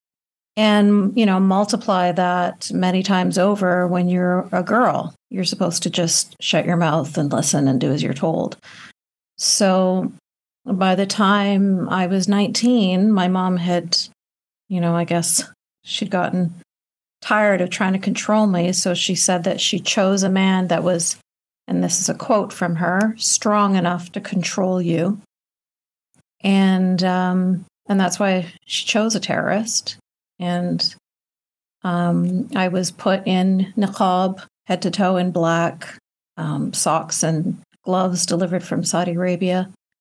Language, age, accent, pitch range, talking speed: English, 50-69, American, 175-200 Hz, 145 wpm